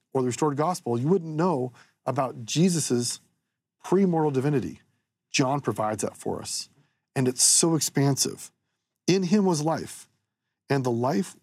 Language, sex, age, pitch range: English, male, 40-59, 125-160 Hz